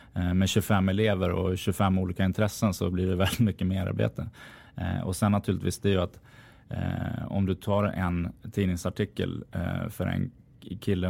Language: Swedish